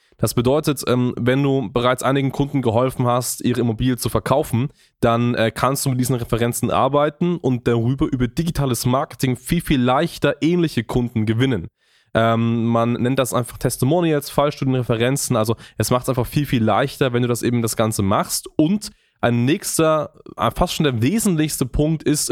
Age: 20-39